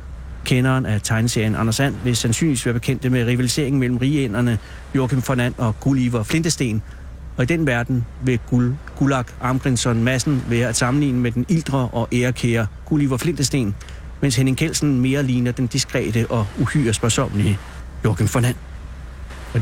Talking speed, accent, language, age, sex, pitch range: 160 wpm, native, Danish, 60-79, male, 105-130 Hz